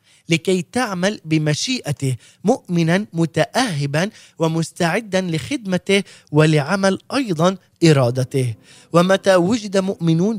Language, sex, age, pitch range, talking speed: Arabic, male, 30-49, 150-200 Hz, 75 wpm